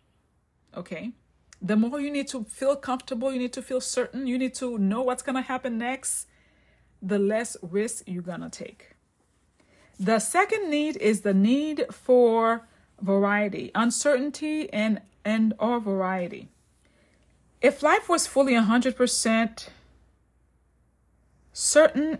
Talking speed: 130 wpm